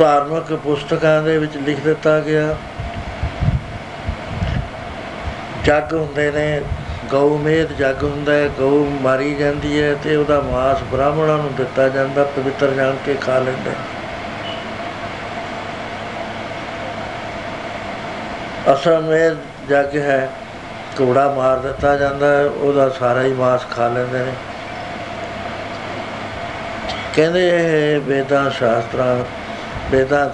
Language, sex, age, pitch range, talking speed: Punjabi, male, 60-79, 130-150 Hz, 105 wpm